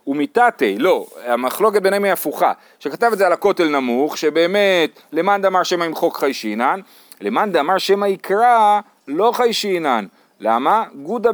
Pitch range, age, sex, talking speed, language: 160-220 Hz, 30-49, male, 150 wpm, Hebrew